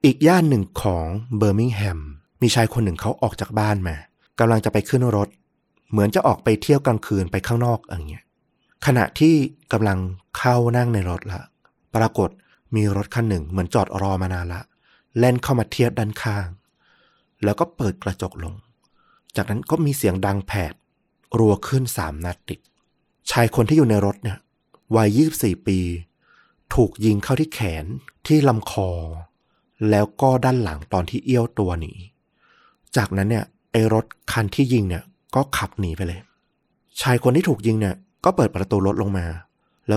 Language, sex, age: Thai, male, 30-49